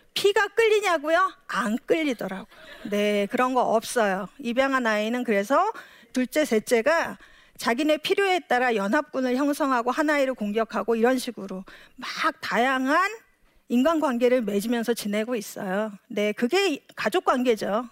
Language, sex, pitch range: Korean, female, 220-320 Hz